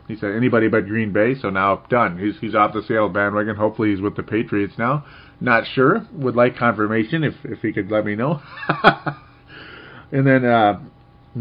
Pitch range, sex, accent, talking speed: 100-120 Hz, male, American, 190 wpm